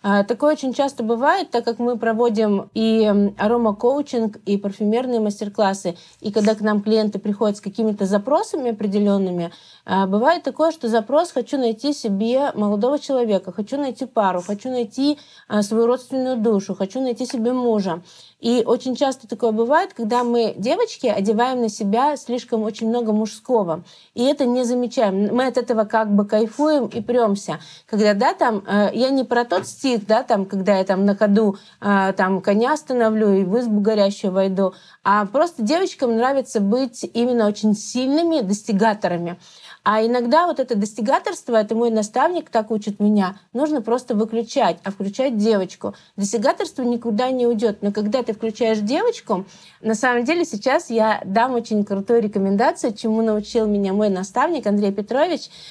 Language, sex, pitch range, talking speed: Russian, female, 205-250 Hz, 150 wpm